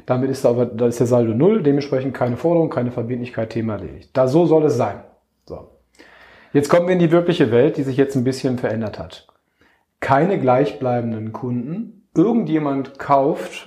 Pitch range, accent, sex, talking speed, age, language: 130-165 Hz, German, male, 175 wpm, 40-59, German